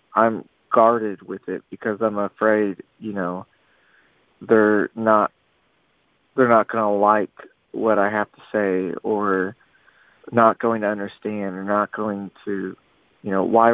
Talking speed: 145 wpm